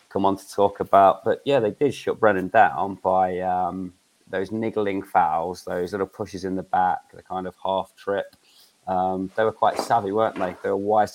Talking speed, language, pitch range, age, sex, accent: 210 wpm, English, 95-100 Hz, 30-49, male, British